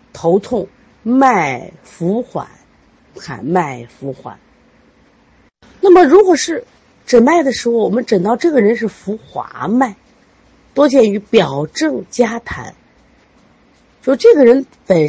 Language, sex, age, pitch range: Chinese, female, 50-69, 165-260 Hz